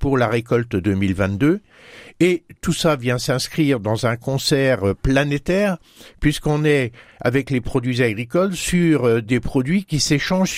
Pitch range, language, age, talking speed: 120-155 Hz, French, 60-79, 135 wpm